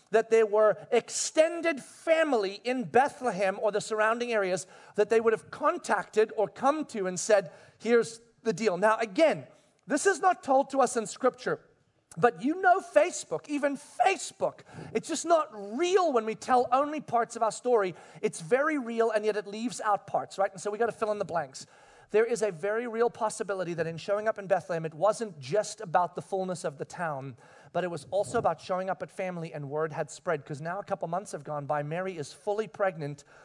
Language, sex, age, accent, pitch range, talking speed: English, male, 40-59, American, 180-235 Hz, 210 wpm